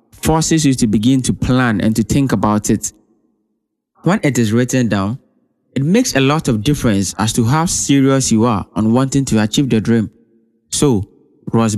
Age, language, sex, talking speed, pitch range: 20-39, English, male, 185 wpm, 110-135 Hz